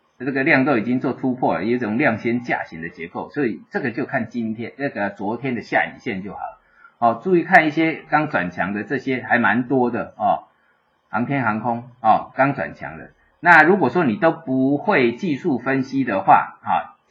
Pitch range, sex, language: 120-160 Hz, male, Chinese